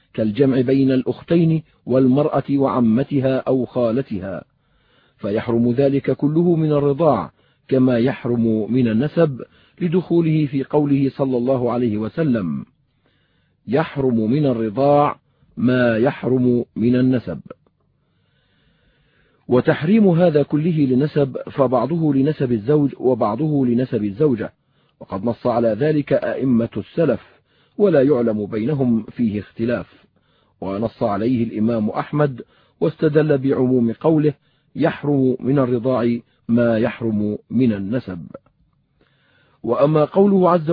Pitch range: 120-150 Hz